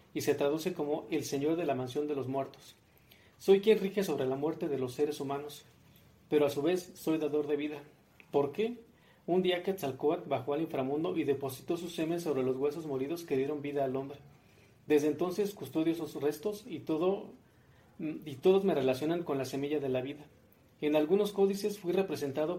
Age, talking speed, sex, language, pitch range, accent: 40-59, 195 wpm, male, Spanish, 140-180 Hz, Mexican